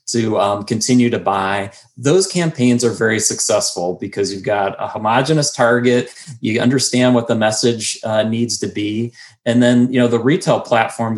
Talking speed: 170 wpm